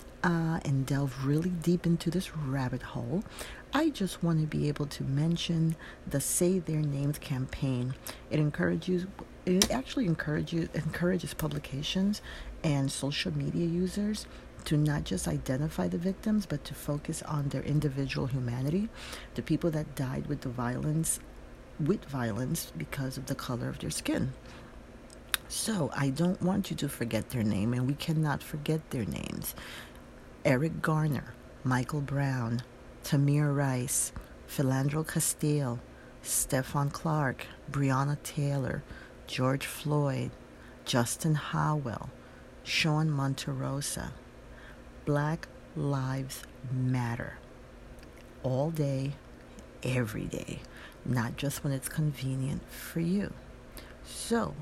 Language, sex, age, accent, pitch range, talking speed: English, female, 40-59, American, 130-160 Hz, 120 wpm